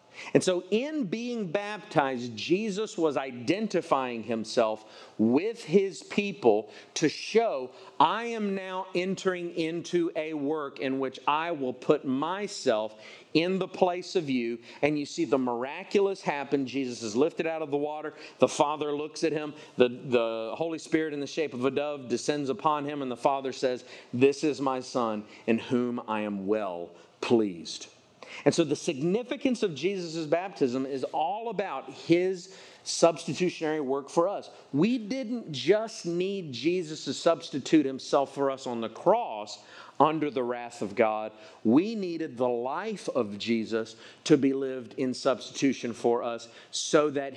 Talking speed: 160 wpm